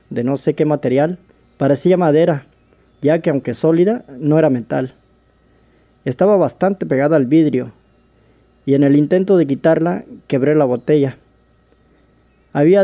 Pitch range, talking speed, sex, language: 130-160 Hz, 135 wpm, male, Spanish